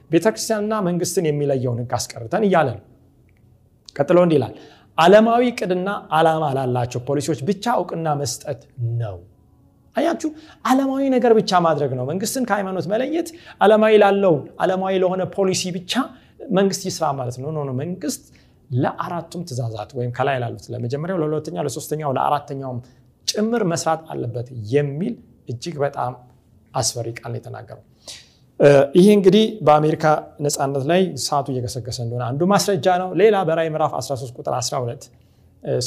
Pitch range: 125-170 Hz